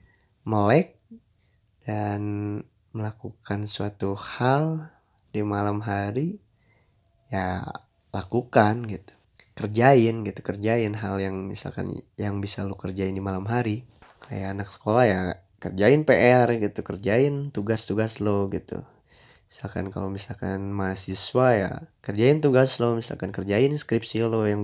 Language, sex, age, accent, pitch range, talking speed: Indonesian, male, 20-39, native, 100-120 Hz, 115 wpm